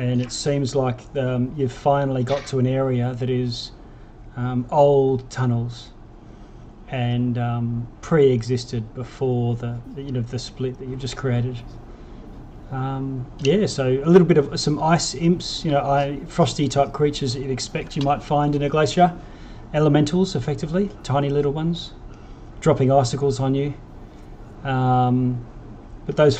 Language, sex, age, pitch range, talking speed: English, male, 30-49, 125-145 Hz, 145 wpm